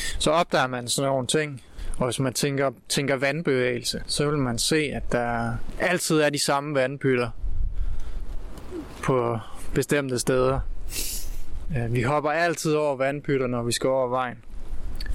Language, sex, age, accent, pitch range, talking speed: Danish, male, 20-39, native, 115-145 Hz, 145 wpm